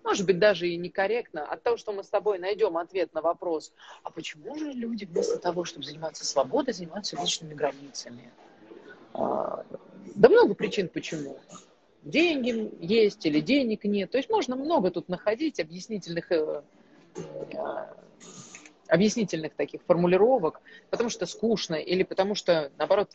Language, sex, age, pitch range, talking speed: Russian, female, 30-49, 170-245 Hz, 135 wpm